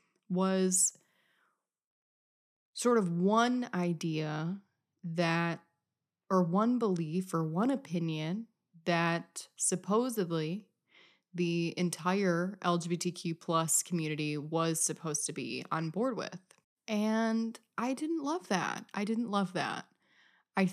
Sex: female